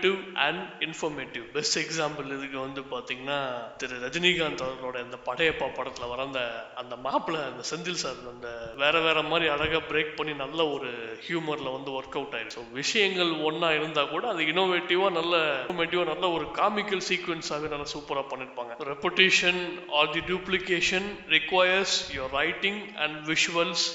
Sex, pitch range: male, 140-170 Hz